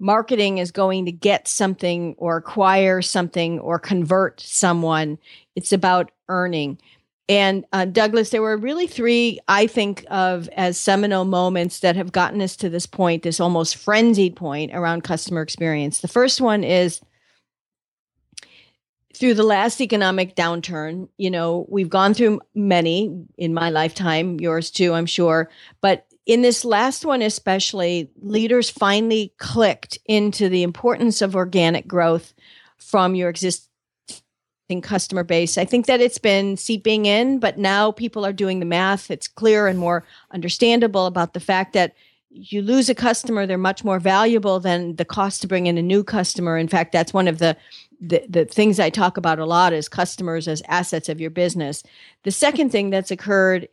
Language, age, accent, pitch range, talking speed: English, 50-69, American, 175-210 Hz, 170 wpm